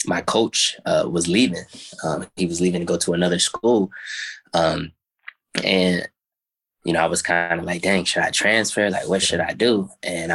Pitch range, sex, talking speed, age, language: 85-90 Hz, male, 190 wpm, 20-39, English